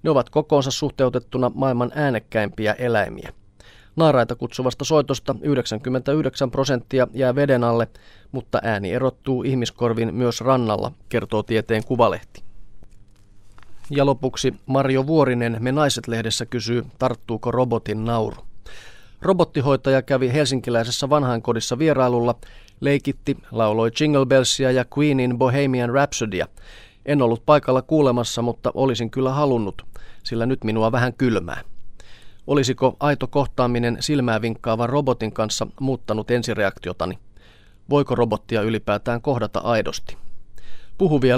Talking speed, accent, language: 110 wpm, native, Finnish